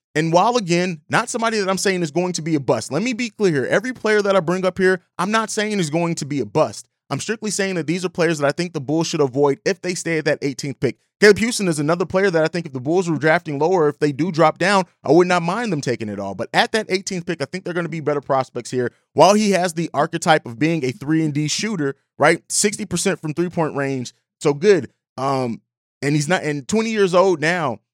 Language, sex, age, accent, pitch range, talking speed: English, male, 30-49, American, 150-190 Hz, 270 wpm